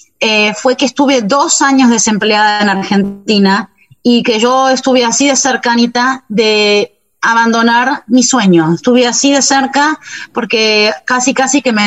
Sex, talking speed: female, 145 wpm